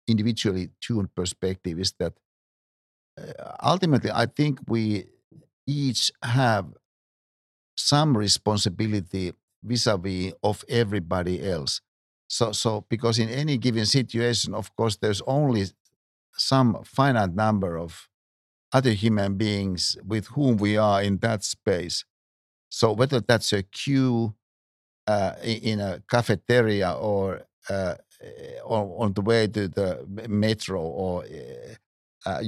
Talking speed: 120 wpm